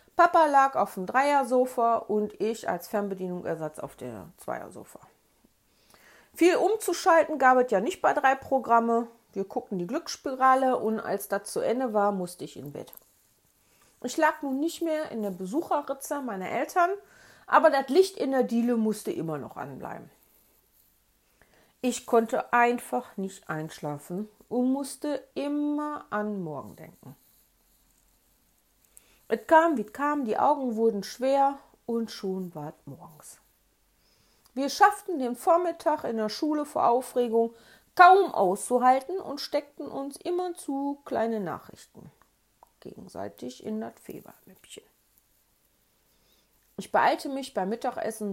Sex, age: female, 40-59